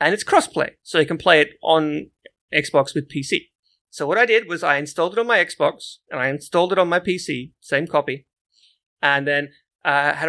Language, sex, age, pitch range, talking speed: English, male, 30-49, 145-180 Hz, 210 wpm